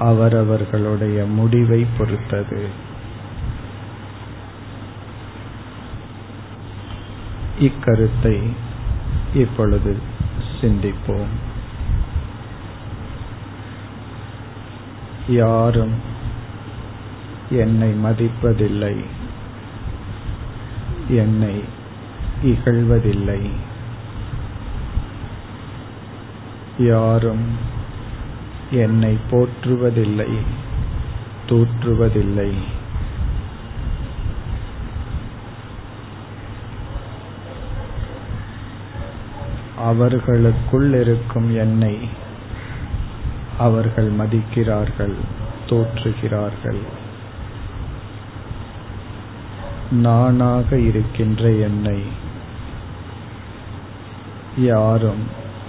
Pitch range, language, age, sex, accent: 105-115 Hz, Tamil, 50-69, male, native